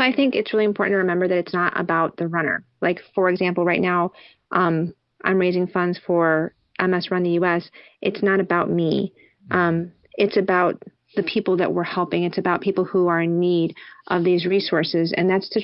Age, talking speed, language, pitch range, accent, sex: 30-49, 200 wpm, English, 170-185 Hz, American, female